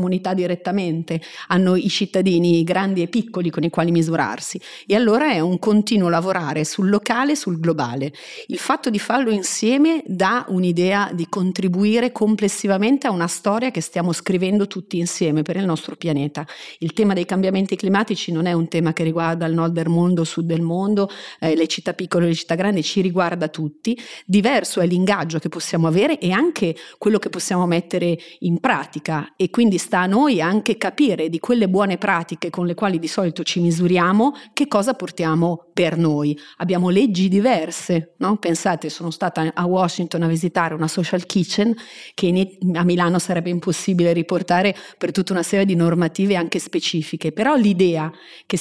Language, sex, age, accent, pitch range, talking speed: Italian, female, 40-59, native, 170-205 Hz, 175 wpm